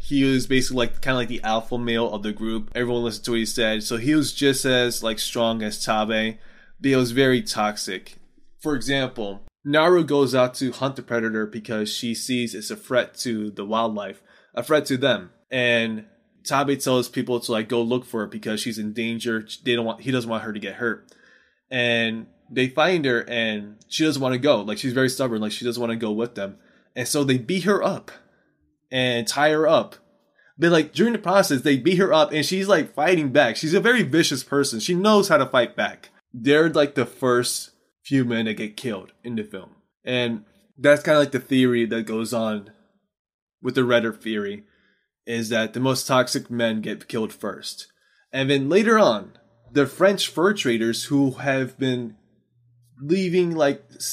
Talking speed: 205 wpm